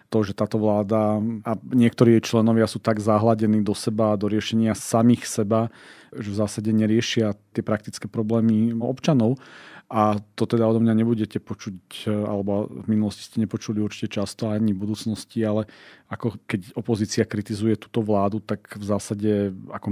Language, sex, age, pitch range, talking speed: Slovak, male, 40-59, 105-115 Hz, 160 wpm